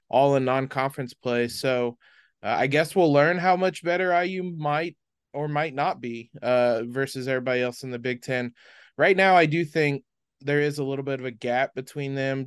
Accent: American